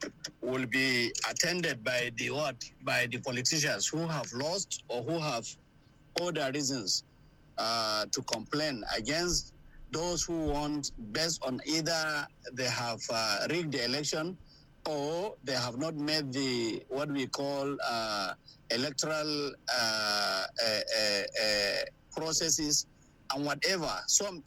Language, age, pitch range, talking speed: English, 50-69, 125-155 Hz, 130 wpm